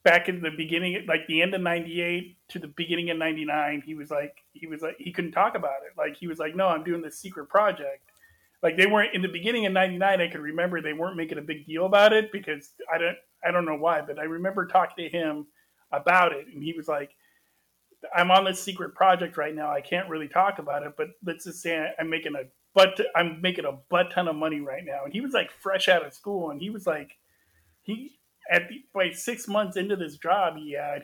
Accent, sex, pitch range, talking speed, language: American, male, 155-185 Hz, 245 wpm, English